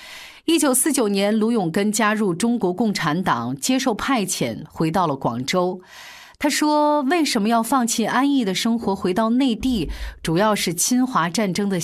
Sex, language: female, Chinese